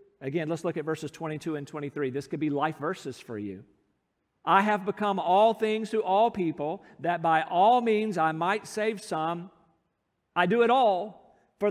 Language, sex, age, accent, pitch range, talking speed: English, male, 50-69, American, 140-200 Hz, 185 wpm